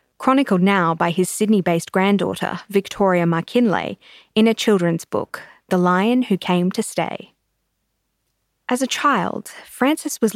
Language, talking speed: English, 135 wpm